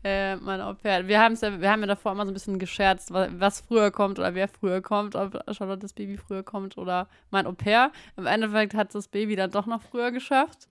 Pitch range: 180-205 Hz